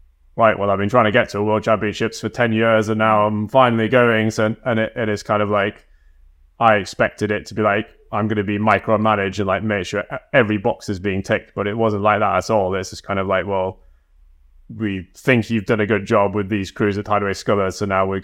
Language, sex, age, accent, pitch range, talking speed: English, male, 20-39, British, 95-110 Hz, 245 wpm